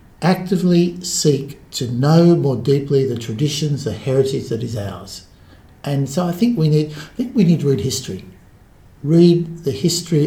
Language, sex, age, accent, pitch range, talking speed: English, male, 60-79, Australian, 110-140 Hz, 170 wpm